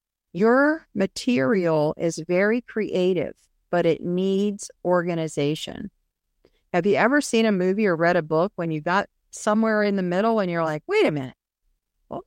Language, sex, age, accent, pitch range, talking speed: English, female, 50-69, American, 160-220 Hz, 160 wpm